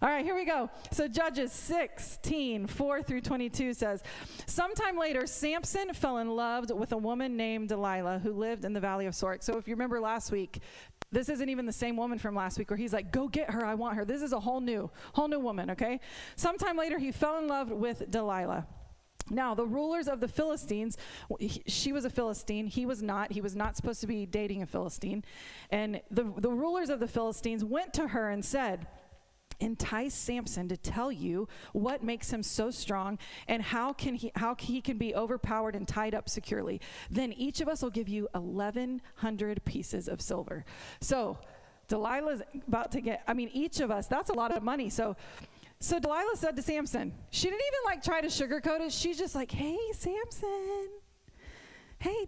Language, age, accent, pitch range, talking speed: English, 30-49, American, 215-300 Hz, 200 wpm